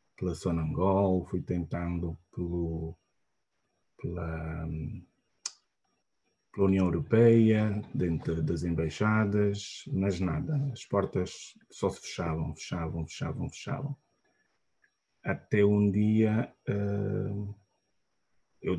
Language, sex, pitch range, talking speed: Portuguese, male, 90-100 Hz, 85 wpm